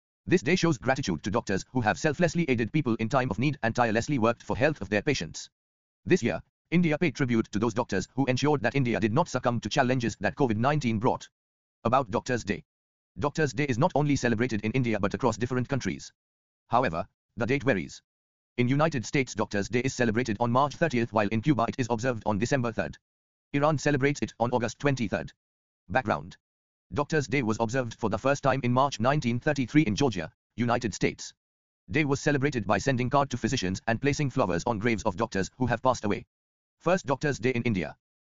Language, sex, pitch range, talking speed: English, male, 105-140 Hz, 200 wpm